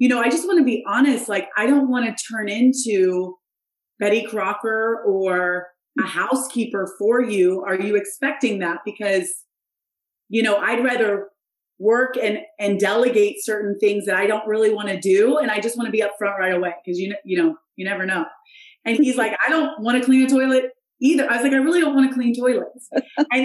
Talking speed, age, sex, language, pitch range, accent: 210 wpm, 30-49, female, English, 195-250 Hz, American